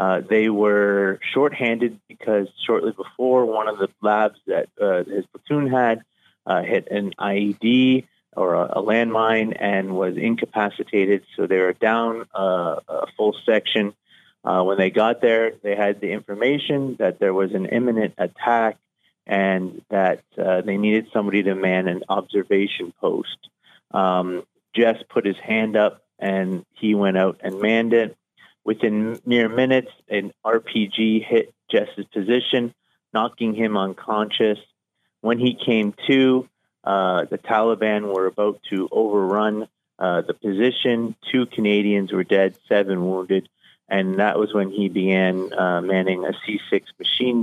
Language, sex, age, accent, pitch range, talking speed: English, male, 30-49, American, 95-115 Hz, 145 wpm